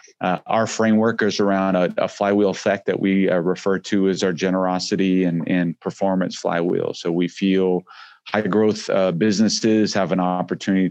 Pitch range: 90-100 Hz